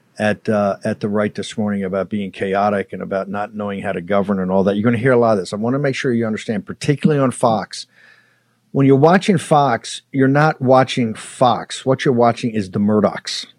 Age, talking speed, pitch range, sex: 50-69, 230 wpm, 110-135 Hz, male